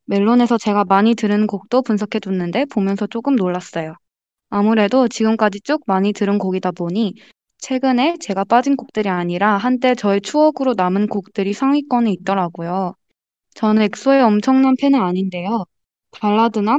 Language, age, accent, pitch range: Korean, 20-39, native, 195-235 Hz